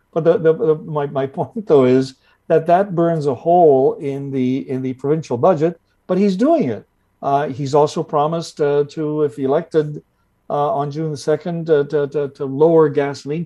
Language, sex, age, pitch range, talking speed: English, male, 50-69, 130-160 Hz, 185 wpm